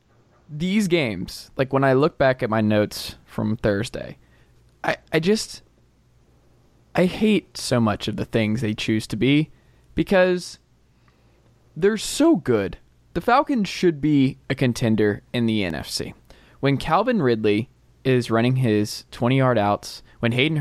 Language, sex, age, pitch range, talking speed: English, male, 20-39, 105-135 Hz, 145 wpm